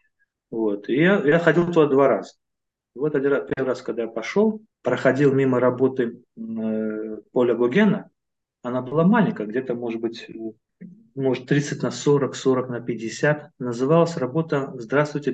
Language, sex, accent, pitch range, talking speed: Russian, male, native, 115-155 Hz, 145 wpm